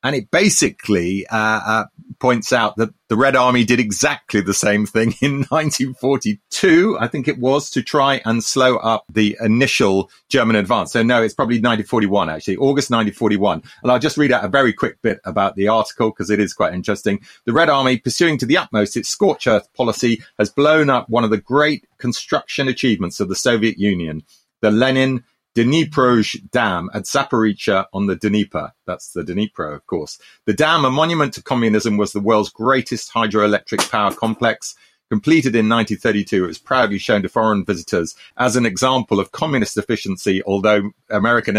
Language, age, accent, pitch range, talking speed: English, 30-49, British, 105-130 Hz, 180 wpm